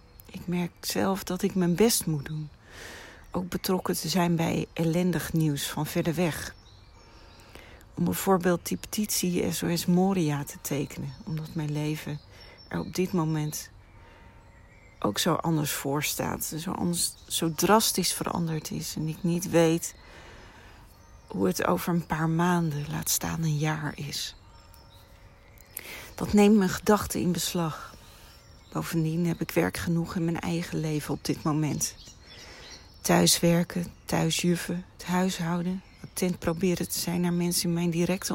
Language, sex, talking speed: Dutch, female, 140 wpm